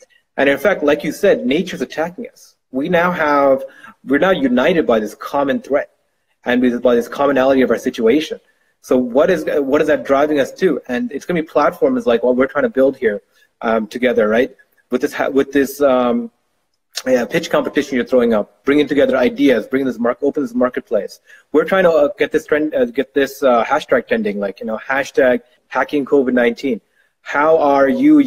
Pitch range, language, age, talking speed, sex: 125-155 Hz, English, 30-49, 200 wpm, male